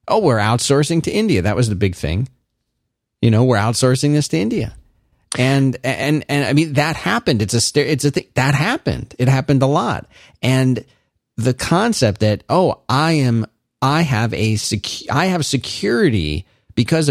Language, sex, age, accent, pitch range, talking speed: English, male, 40-59, American, 105-135 Hz, 175 wpm